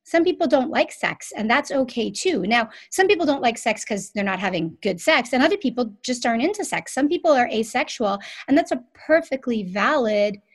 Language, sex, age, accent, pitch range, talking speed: English, female, 30-49, American, 200-265 Hz, 210 wpm